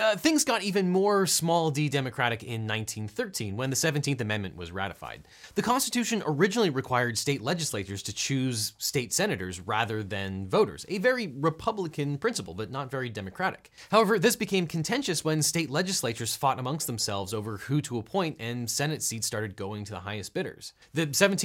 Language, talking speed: English, 170 wpm